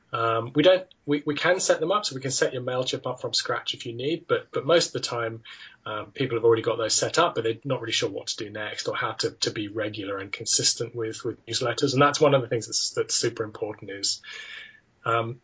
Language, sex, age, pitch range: English, male, 30-49, 115-145 Hz